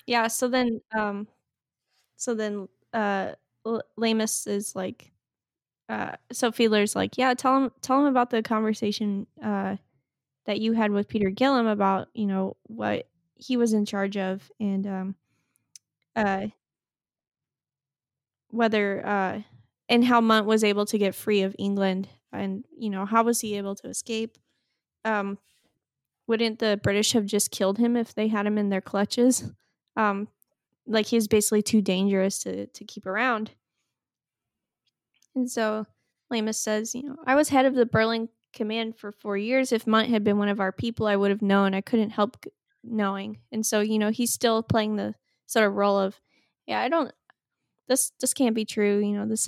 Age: 10-29